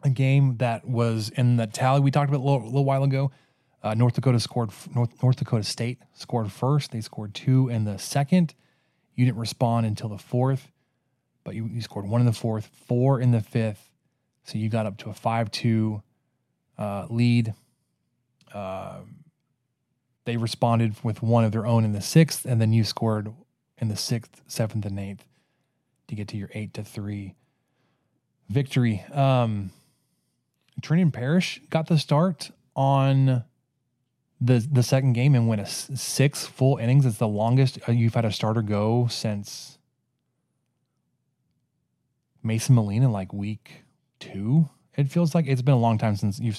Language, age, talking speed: English, 20-39, 170 wpm